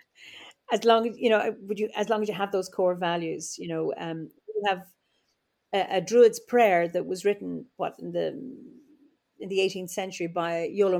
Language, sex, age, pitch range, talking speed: English, female, 40-59, 170-205 Hz, 195 wpm